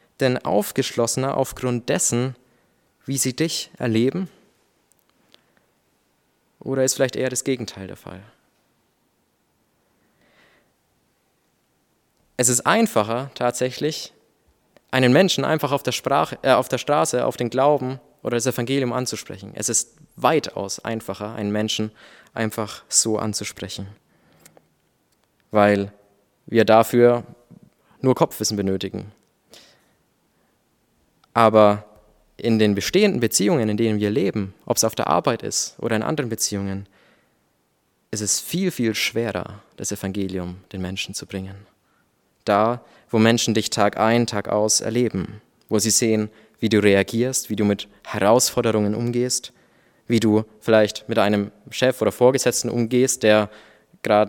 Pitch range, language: 105-125 Hz, German